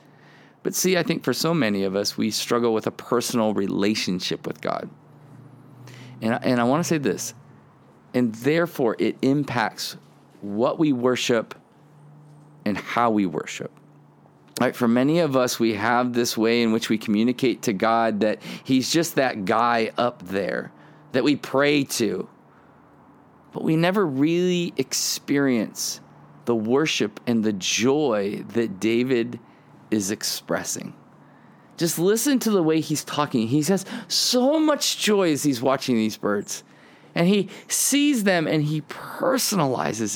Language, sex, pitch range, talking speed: English, male, 115-170 Hz, 145 wpm